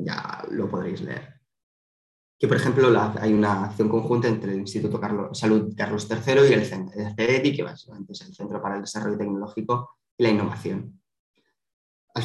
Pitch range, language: 105-115 Hz, Spanish